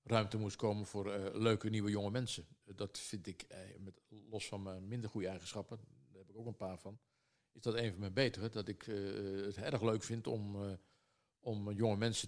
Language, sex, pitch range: Dutch, male, 100-120 Hz